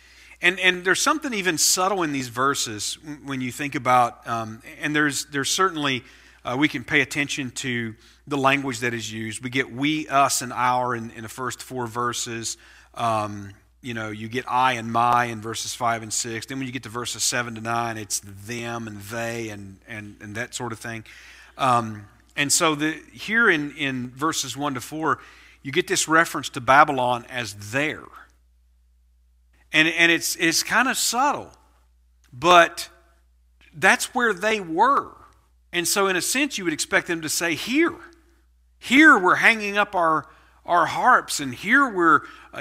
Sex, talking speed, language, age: male, 180 wpm, English, 40-59